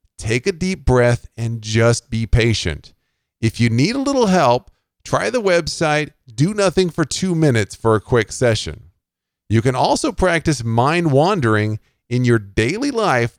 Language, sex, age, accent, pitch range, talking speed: English, male, 50-69, American, 110-160 Hz, 155 wpm